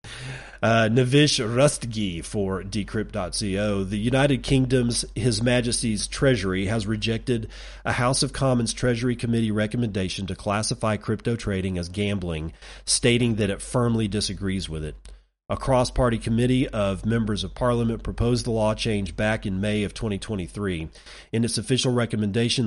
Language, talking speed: English, 140 wpm